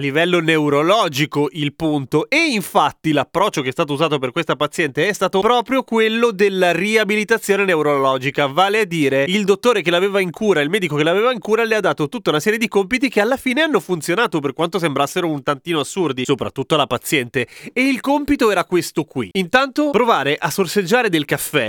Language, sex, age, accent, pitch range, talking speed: Italian, male, 30-49, native, 145-200 Hz, 195 wpm